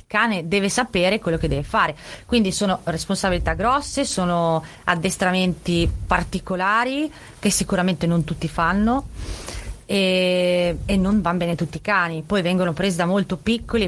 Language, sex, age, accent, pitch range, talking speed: Italian, female, 30-49, native, 170-215 Hz, 145 wpm